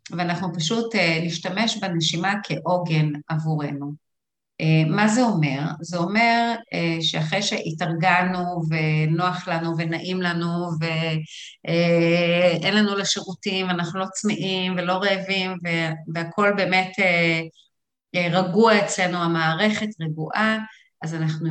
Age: 30-49